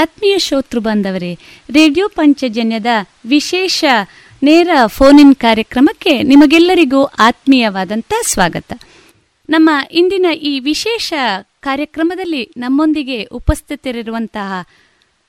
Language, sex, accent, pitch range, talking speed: Kannada, female, native, 235-320 Hz, 75 wpm